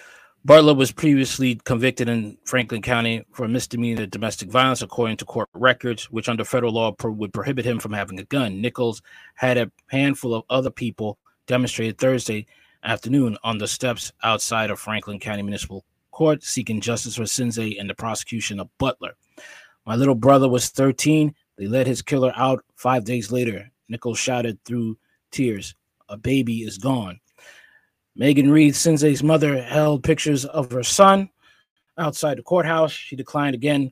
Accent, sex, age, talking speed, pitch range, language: American, male, 20-39, 160 wpm, 115-140 Hz, English